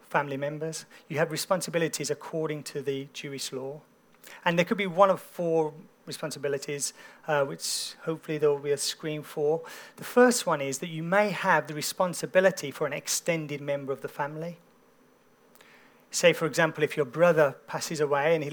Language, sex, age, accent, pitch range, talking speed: English, male, 40-59, British, 145-180 Hz, 175 wpm